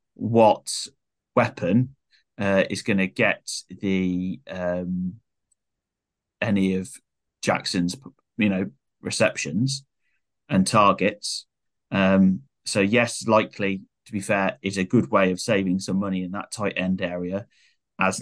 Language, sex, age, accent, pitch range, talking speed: English, male, 30-49, British, 90-100 Hz, 120 wpm